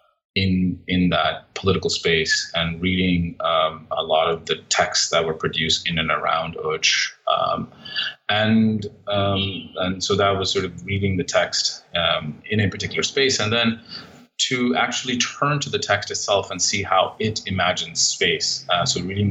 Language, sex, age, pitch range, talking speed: English, male, 30-49, 90-105 Hz, 170 wpm